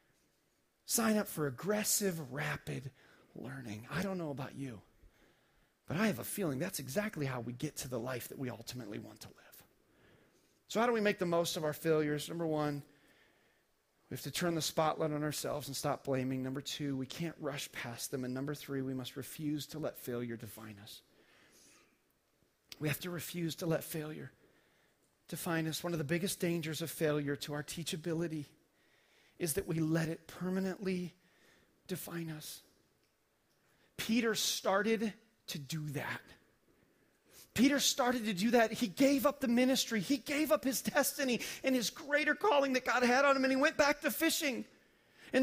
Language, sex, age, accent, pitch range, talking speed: English, male, 40-59, American, 150-245 Hz, 175 wpm